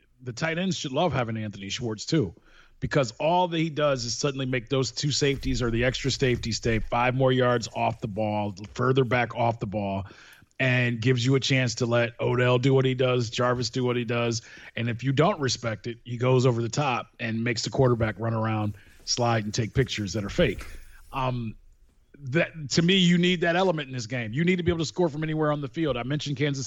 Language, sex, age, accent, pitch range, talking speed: English, male, 30-49, American, 115-145 Hz, 230 wpm